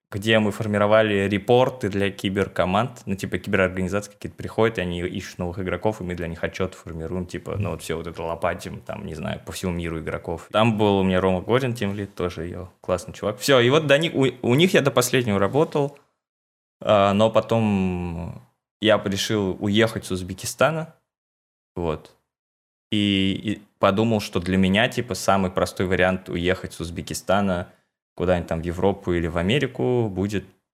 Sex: male